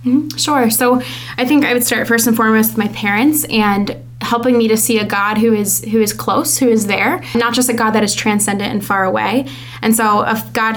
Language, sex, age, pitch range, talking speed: English, female, 20-39, 210-240 Hz, 230 wpm